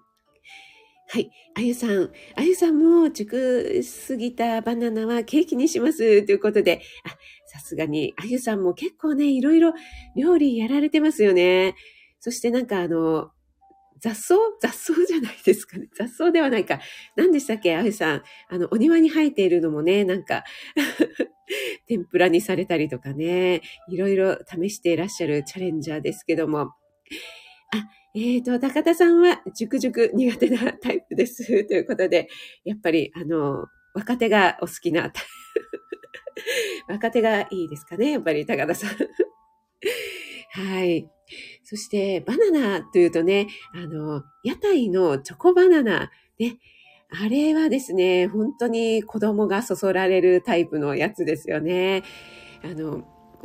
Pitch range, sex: 180-295 Hz, female